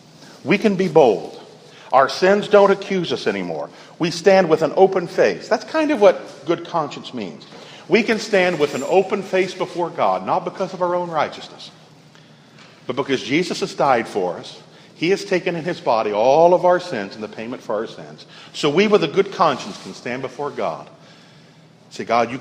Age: 50-69